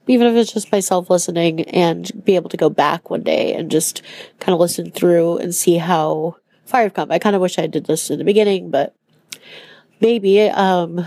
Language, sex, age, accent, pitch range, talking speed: English, female, 30-49, American, 170-200 Hz, 210 wpm